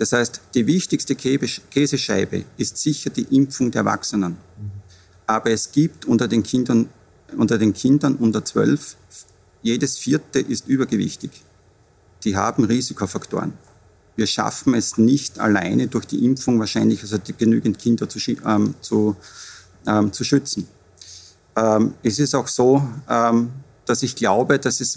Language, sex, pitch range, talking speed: German, male, 100-135 Hz, 135 wpm